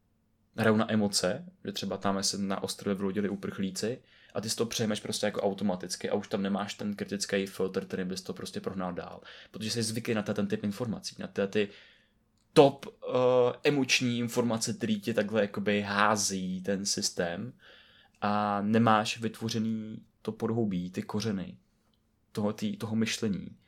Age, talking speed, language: 20-39, 160 wpm, Czech